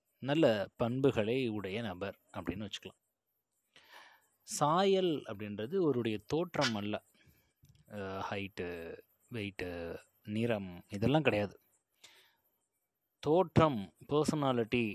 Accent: native